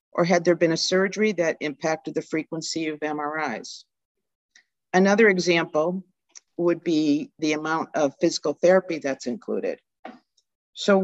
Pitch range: 145-175 Hz